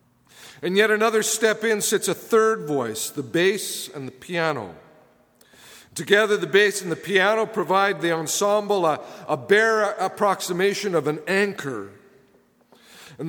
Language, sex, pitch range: English, male, 155-210 Hz